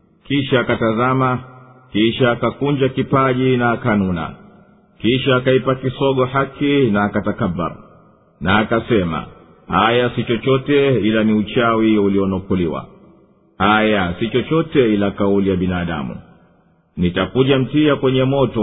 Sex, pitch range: male, 105-130 Hz